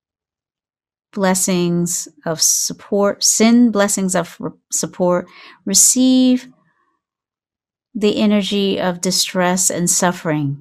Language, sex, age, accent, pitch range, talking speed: English, female, 50-69, American, 155-195 Hz, 80 wpm